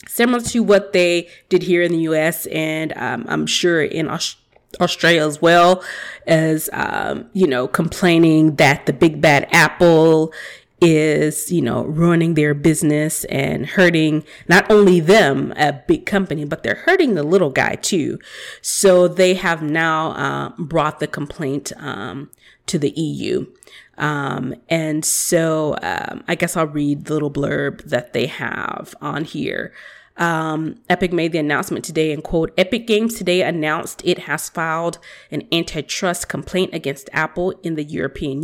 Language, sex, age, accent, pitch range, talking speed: English, female, 30-49, American, 155-185 Hz, 155 wpm